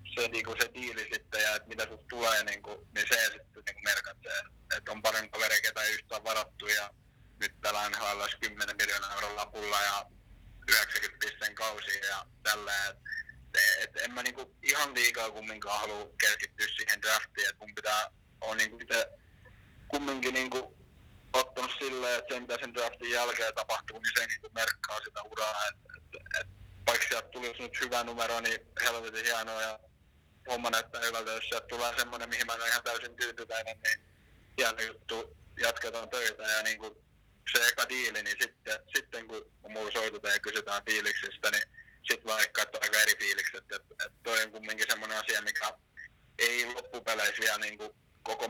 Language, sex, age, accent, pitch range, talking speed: Finnish, male, 20-39, native, 110-130 Hz, 165 wpm